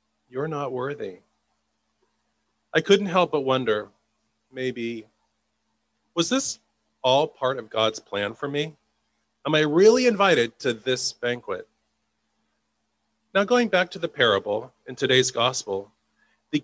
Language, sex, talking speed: English, male, 125 wpm